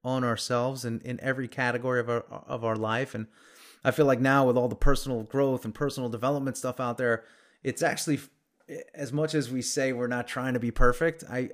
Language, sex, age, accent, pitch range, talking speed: English, male, 30-49, American, 120-150 Hz, 215 wpm